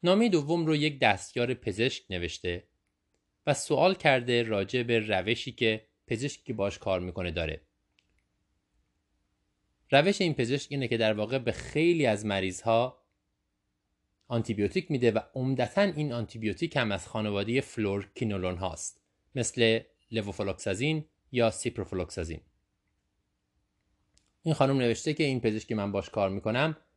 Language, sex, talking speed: Persian, male, 120 wpm